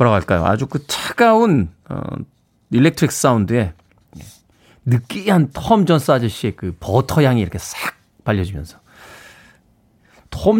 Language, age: Korean, 40-59